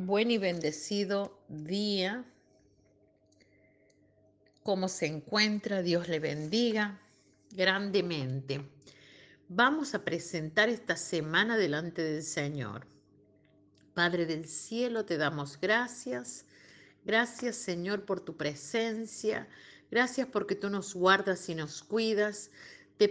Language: Spanish